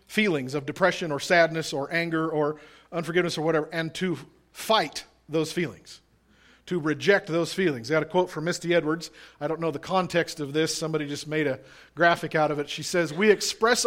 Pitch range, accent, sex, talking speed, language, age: 150-185 Hz, American, male, 200 wpm, English, 40-59